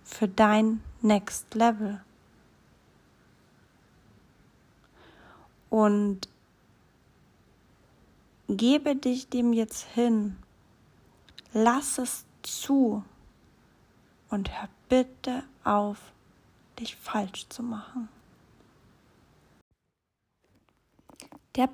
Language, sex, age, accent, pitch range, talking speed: German, female, 40-59, German, 230-280 Hz, 60 wpm